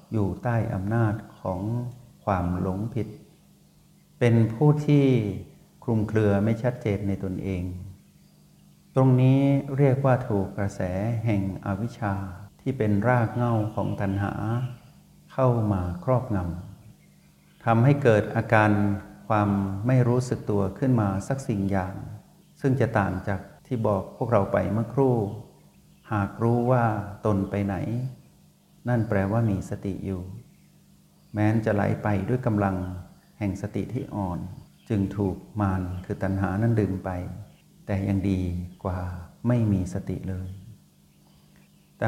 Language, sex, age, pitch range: Thai, male, 60-79, 100-125 Hz